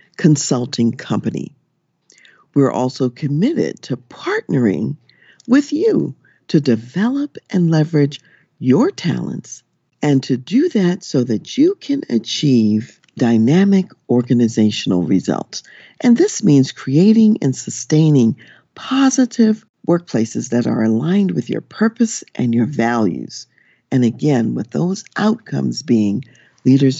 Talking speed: 115 wpm